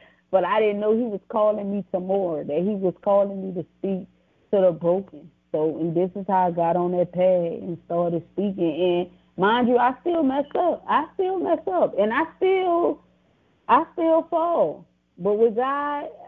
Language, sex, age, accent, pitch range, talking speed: English, female, 30-49, American, 170-215 Hz, 195 wpm